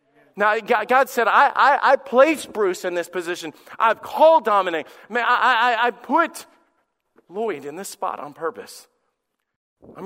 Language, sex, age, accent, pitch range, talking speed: English, male, 40-59, American, 145-190 Hz, 155 wpm